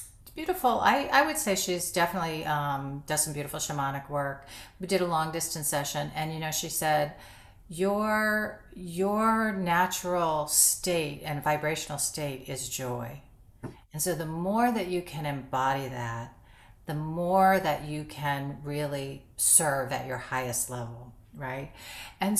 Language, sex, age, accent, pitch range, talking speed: English, female, 40-59, American, 130-175 Hz, 145 wpm